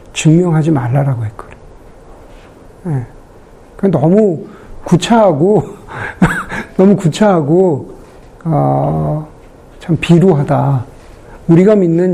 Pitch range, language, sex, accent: 145-190 Hz, Korean, male, native